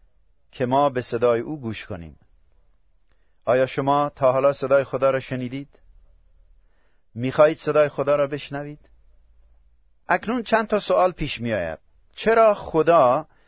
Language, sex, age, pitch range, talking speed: Persian, male, 50-69, 115-170 Hz, 130 wpm